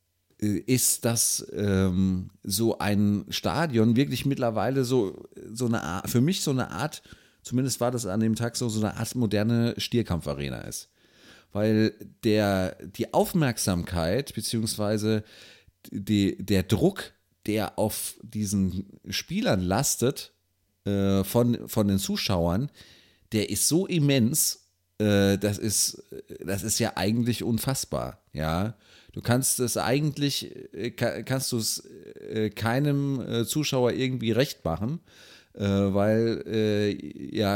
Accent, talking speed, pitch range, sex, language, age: German, 120 wpm, 100-120 Hz, male, German, 30-49